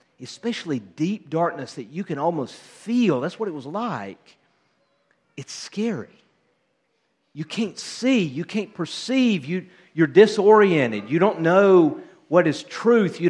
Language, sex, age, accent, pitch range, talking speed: English, male, 50-69, American, 150-205 Hz, 135 wpm